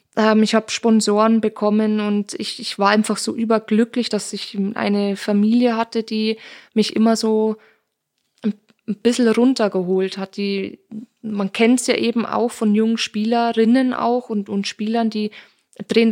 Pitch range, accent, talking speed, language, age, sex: 205-225 Hz, German, 150 wpm, German, 20-39, female